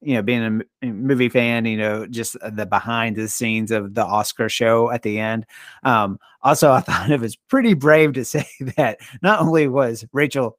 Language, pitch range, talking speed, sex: English, 115-150 Hz, 185 wpm, male